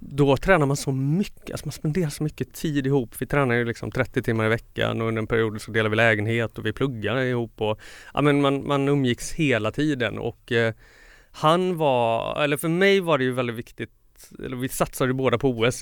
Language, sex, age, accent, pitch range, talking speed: Swedish, male, 30-49, native, 110-140 Hz, 230 wpm